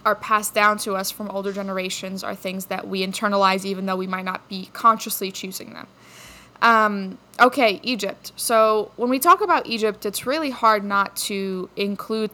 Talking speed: 180 wpm